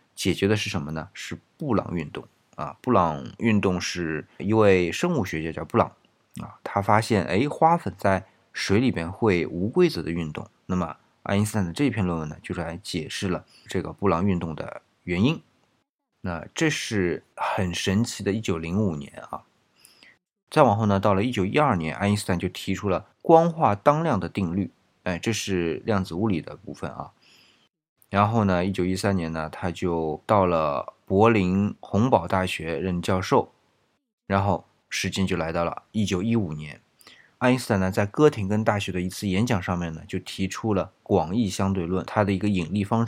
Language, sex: Chinese, male